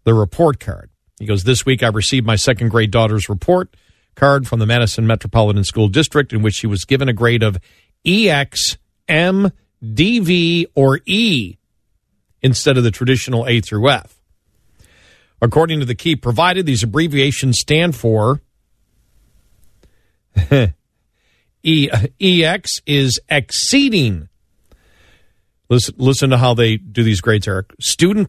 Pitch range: 110-160 Hz